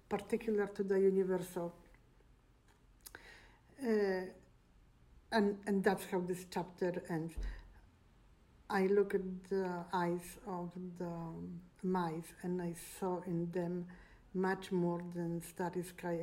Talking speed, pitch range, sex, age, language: 110 wpm, 170-200 Hz, female, 50-69, English